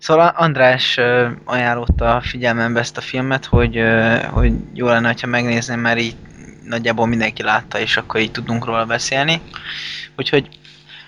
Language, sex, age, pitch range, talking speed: Hungarian, male, 20-39, 115-125 Hz, 135 wpm